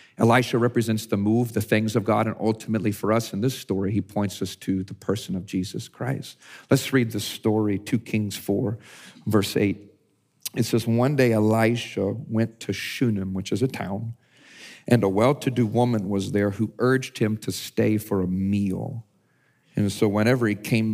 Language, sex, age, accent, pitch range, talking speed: English, male, 50-69, American, 105-125 Hz, 185 wpm